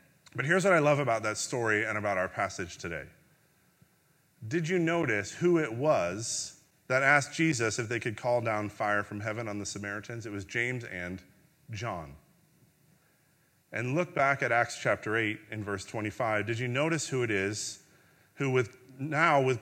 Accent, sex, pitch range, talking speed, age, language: American, male, 115-155 Hz, 175 wpm, 30-49, English